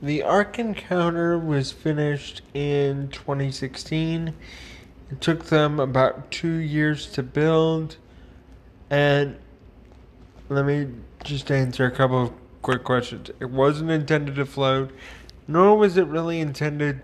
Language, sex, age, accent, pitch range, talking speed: English, male, 20-39, American, 125-145 Hz, 125 wpm